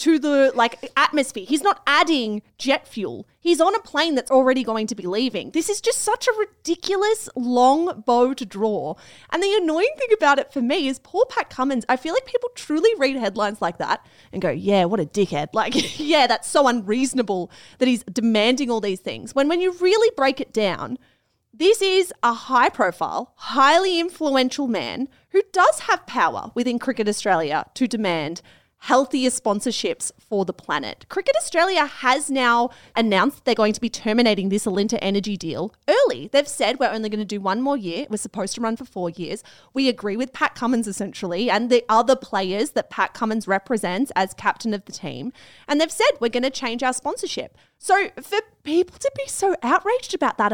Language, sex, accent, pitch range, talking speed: English, female, Australian, 220-330 Hz, 195 wpm